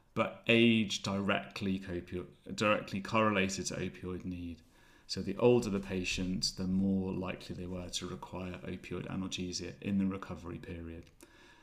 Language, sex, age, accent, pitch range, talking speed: English, male, 30-49, British, 95-115 Hz, 135 wpm